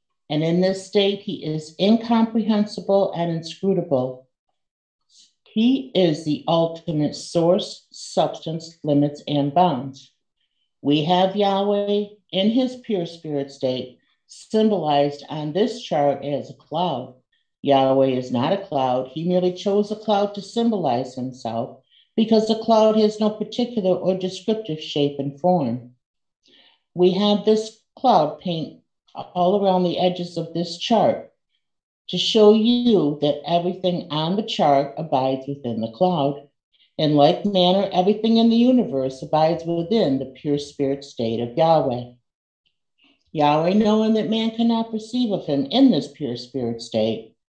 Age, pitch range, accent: 50-69, 140-205 Hz, American